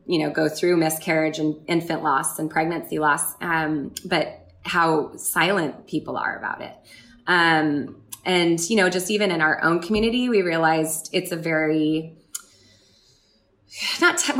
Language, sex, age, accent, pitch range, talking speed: English, female, 20-39, American, 155-185 Hz, 145 wpm